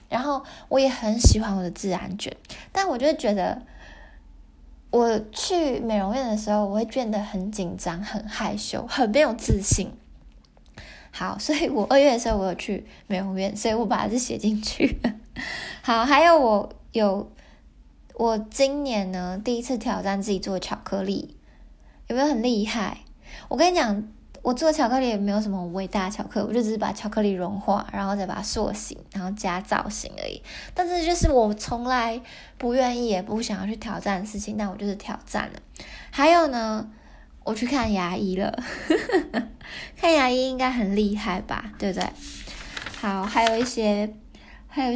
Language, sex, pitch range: Chinese, female, 200-255 Hz